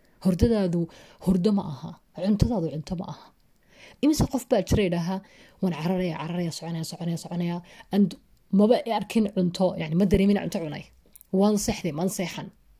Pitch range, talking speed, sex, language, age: 165-205 Hz, 135 wpm, female, German, 30-49